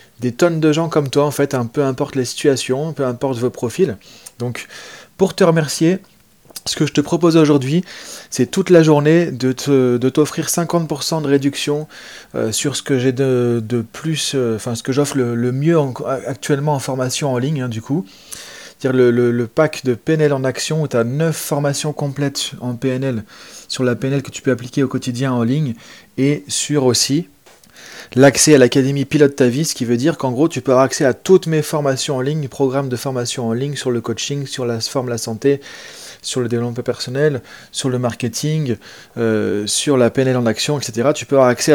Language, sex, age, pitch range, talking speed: French, male, 30-49, 125-150 Hz, 210 wpm